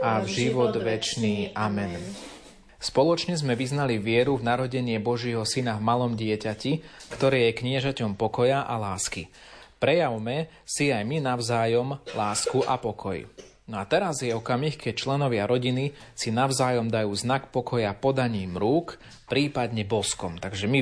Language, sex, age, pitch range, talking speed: Slovak, male, 30-49, 110-130 Hz, 140 wpm